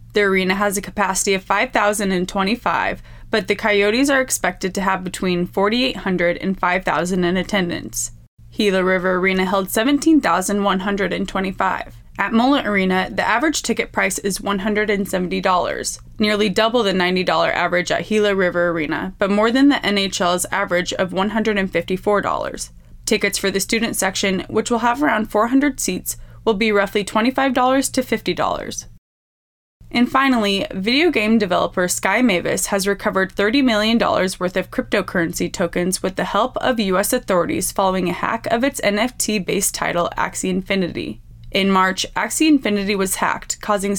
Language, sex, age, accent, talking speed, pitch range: English, female, 20-39, American, 145 wpm, 185-220 Hz